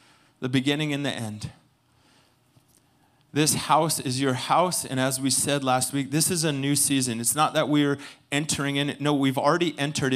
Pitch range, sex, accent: 125-145 Hz, male, American